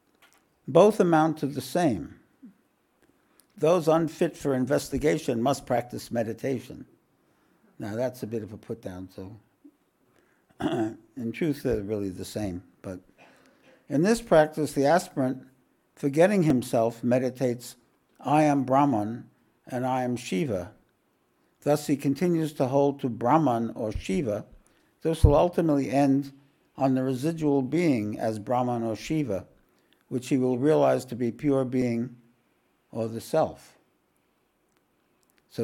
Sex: male